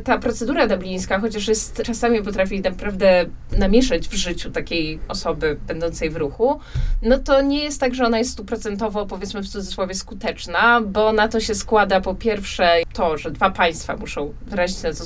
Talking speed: 175 wpm